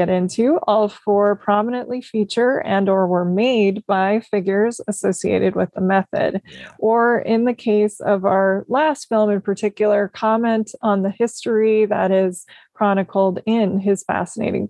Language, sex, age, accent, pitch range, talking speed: English, female, 20-39, American, 195-220 Hz, 145 wpm